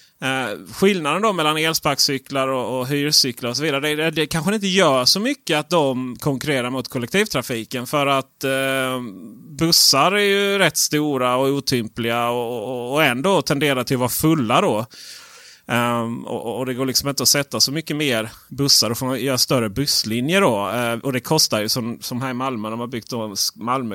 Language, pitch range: Swedish, 120-155 Hz